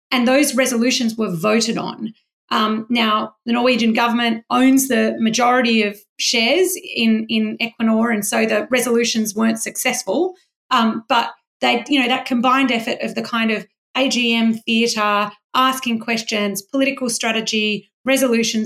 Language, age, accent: English, 30-49, Australian